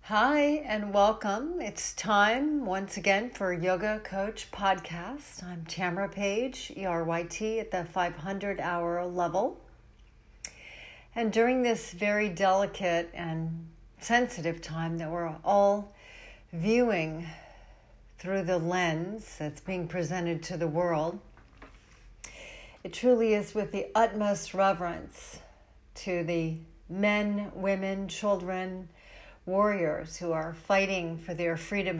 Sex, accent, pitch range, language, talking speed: female, American, 165-210 Hz, English, 110 wpm